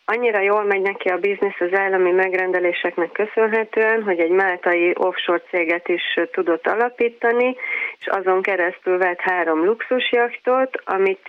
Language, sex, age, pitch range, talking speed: Hungarian, female, 30-49, 170-215 Hz, 135 wpm